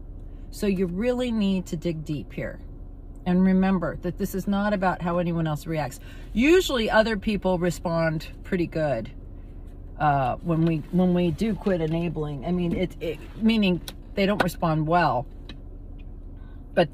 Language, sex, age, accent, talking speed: English, female, 40-59, American, 150 wpm